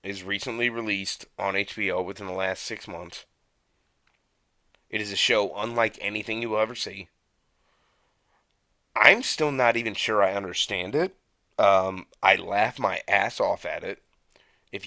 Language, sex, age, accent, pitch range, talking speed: English, male, 30-49, American, 100-125 Hz, 150 wpm